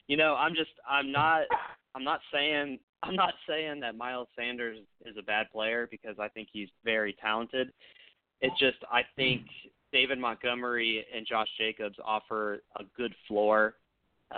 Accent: American